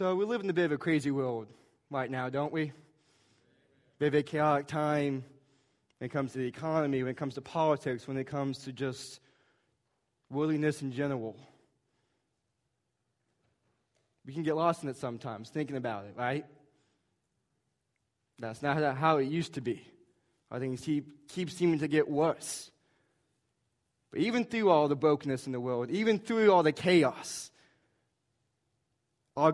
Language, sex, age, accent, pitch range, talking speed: English, male, 20-39, American, 130-160 Hz, 165 wpm